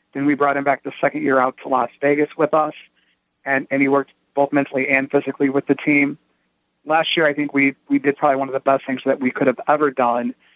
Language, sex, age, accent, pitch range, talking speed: English, male, 30-49, American, 130-145 Hz, 250 wpm